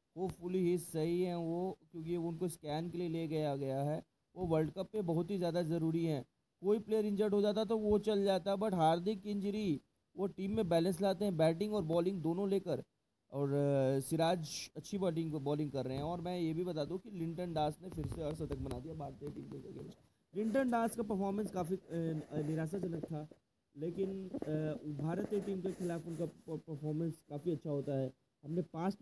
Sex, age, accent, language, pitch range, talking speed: male, 20-39, Indian, English, 145-180 Hz, 130 wpm